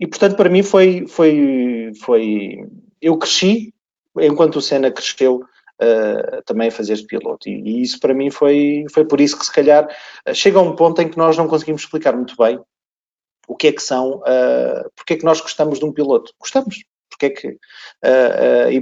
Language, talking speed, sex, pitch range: English, 190 wpm, male, 125-165 Hz